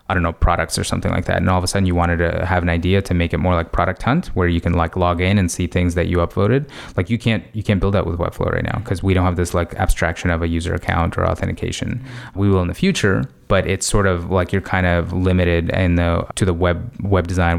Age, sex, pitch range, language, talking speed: 20-39, male, 85-105 Hz, English, 285 wpm